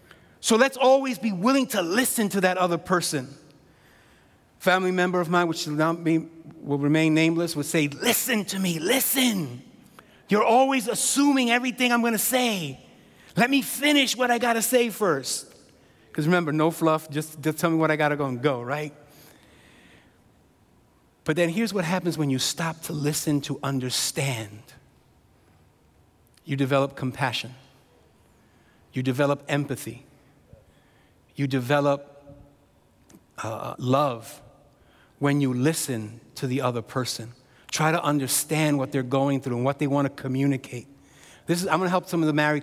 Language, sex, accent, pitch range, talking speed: English, male, American, 140-180 Hz, 155 wpm